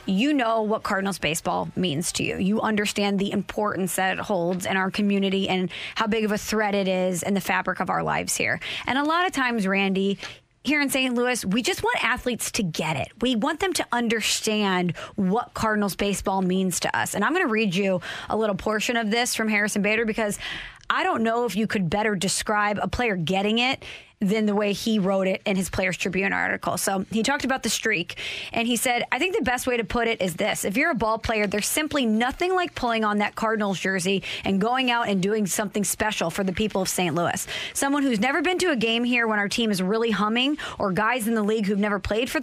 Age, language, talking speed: 20-39, English, 240 wpm